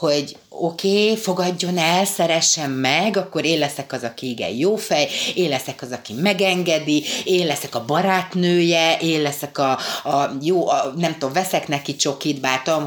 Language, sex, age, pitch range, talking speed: Hungarian, female, 30-49, 130-175 Hz, 170 wpm